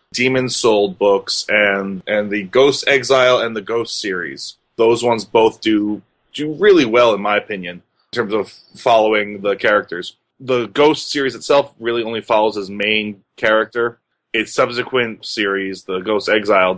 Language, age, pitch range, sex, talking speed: English, 20-39, 100-120 Hz, male, 155 wpm